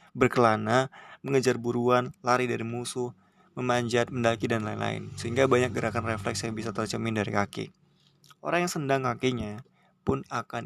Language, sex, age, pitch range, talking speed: Indonesian, male, 20-39, 110-130 Hz, 140 wpm